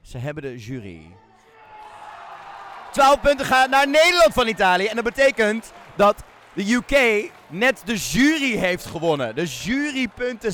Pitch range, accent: 135-195 Hz, Dutch